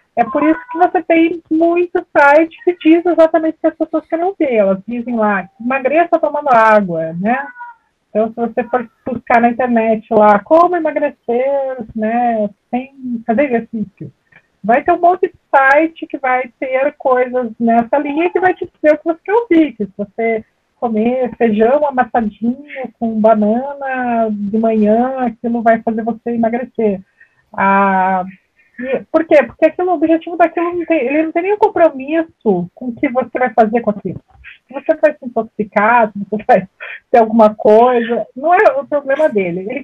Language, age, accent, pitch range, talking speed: Portuguese, 40-59, Brazilian, 225-305 Hz, 170 wpm